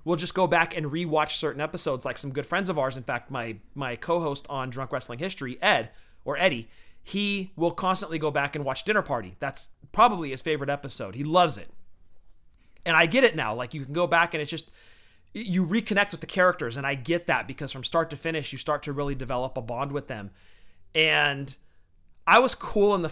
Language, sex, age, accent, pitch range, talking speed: English, male, 30-49, American, 125-165 Hz, 225 wpm